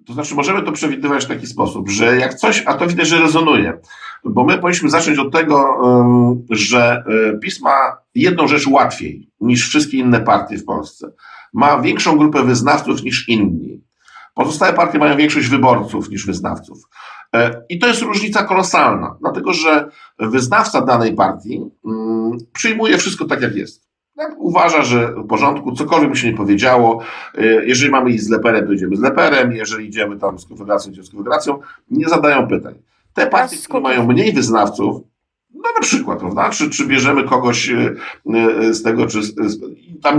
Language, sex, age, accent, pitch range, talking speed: Polish, male, 50-69, native, 110-155 Hz, 160 wpm